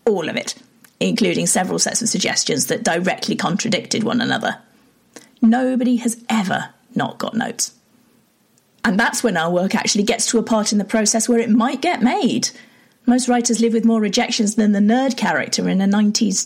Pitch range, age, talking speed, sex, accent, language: 215-245 Hz, 40-59, 180 wpm, female, British, English